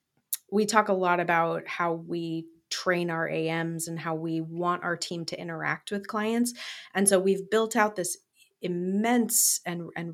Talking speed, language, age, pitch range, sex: 170 wpm, English, 30-49, 170-215 Hz, female